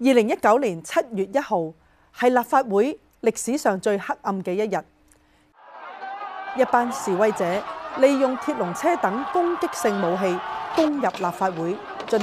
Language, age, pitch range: Chinese, 30-49, 180-260 Hz